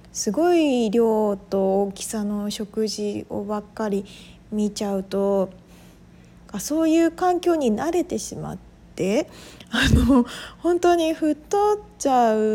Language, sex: Japanese, female